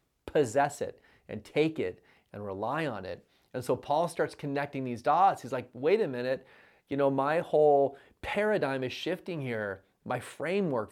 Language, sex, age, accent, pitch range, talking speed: English, male, 40-59, American, 115-145 Hz, 170 wpm